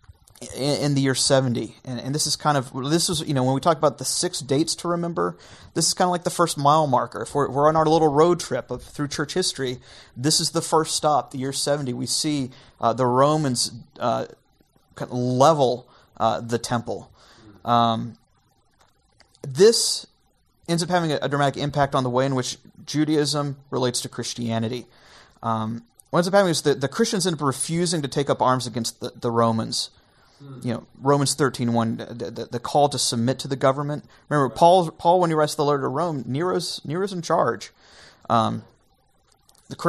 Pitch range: 125-155 Hz